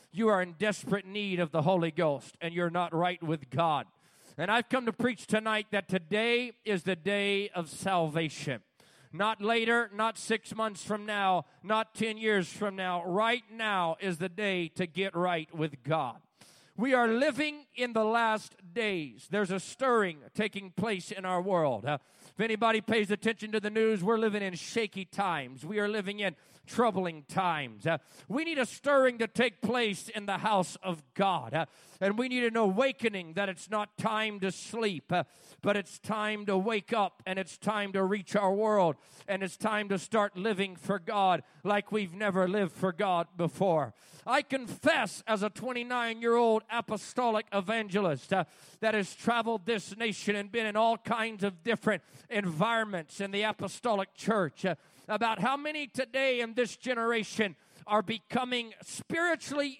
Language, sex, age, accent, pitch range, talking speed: English, male, 40-59, American, 185-225 Hz, 175 wpm